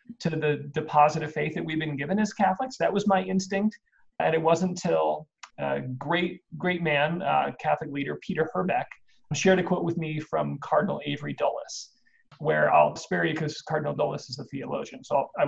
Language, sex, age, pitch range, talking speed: English, male, 40-59, 160-210 Hz, 190 wpm